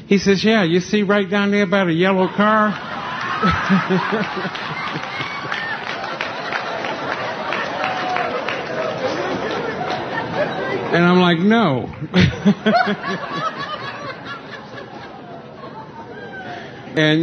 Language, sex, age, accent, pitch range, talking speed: English, male, 60-79, American, 135-195 Hz, 60 wpm